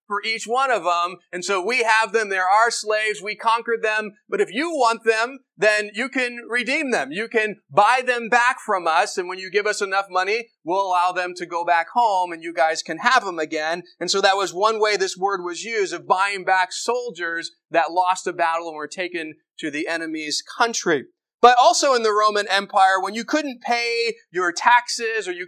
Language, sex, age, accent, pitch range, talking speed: English, male, 30-49, American, 190-235 Hz, 220 wpm